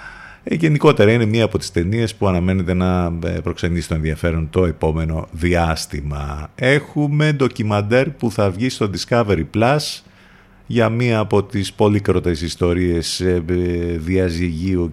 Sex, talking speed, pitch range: male, 125 wpm, 85-105 Hz